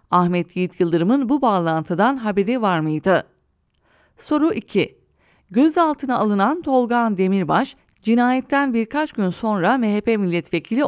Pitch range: 180-255 Hz